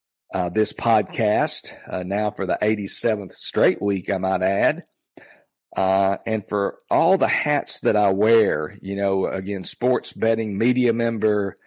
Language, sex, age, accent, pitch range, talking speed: English, male, 50-69, American, 100-120 Hz, 150 wpm